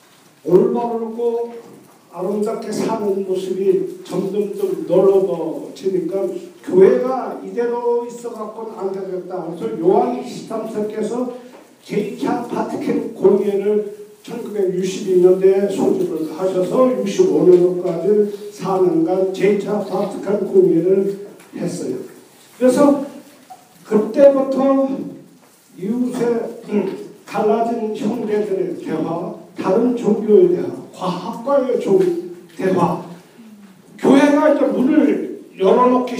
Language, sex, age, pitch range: Korean, male, 50-69, 190-265 Hz